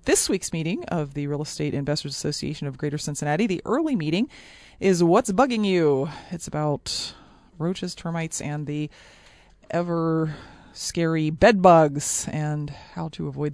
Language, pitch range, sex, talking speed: English, 150-190 Hz, female, 145 wpm